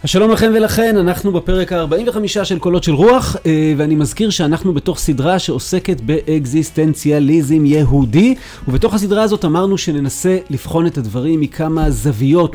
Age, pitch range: 30-49, 145-185 Hz